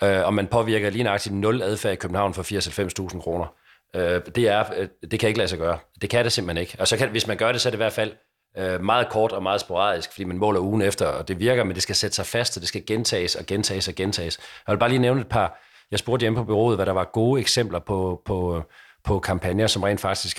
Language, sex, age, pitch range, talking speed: Danish, male, 40-59, 95-120 Hz, 260 wpm